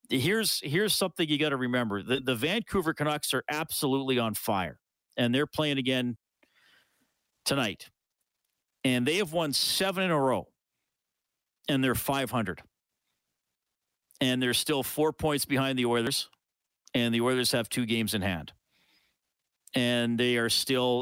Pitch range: 115-145 Hz